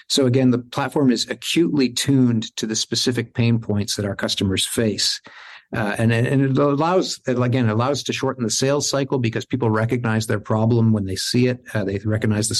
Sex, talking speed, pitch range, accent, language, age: male, 205 wpm, 110-130 Hz, American, English, 50-69